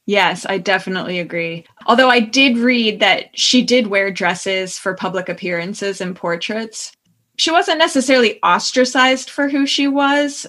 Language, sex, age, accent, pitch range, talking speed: English, female, 20-39, American, 190-245 Hz, 150 wpm